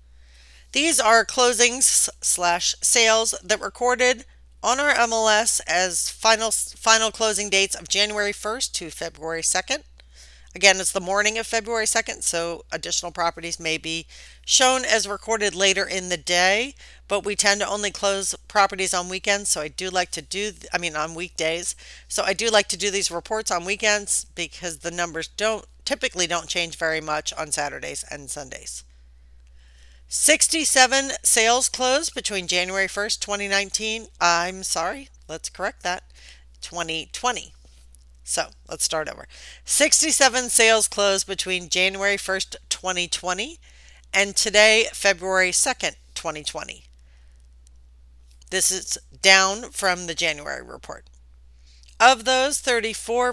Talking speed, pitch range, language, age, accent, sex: 135 wpm, 160-225 Hz, English, 40-59, American, female